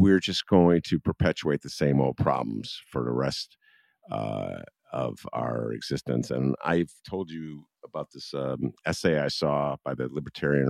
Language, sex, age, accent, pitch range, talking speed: English, male, 50-69, American, 70-105 Hz, 165 wpm